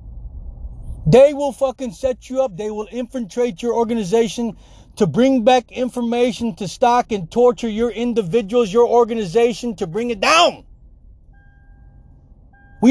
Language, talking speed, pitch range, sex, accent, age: English, 130 wpm, 150-245 Hz, male, American, 40-59